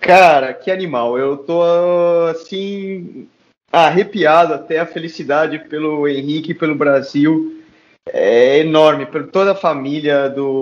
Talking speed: 120 wpm